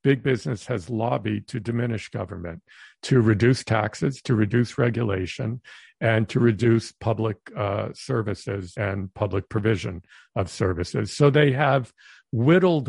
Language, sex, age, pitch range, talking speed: English, male, 50-69, 105-130 Hz, 130 wpm